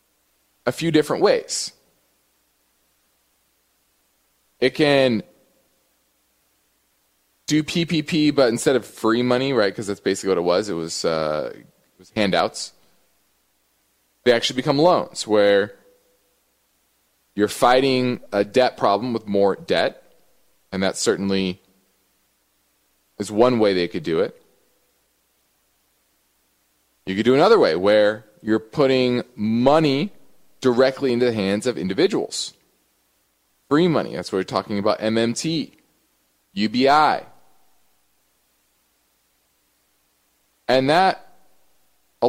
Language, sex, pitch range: English, male, 80-130 Hz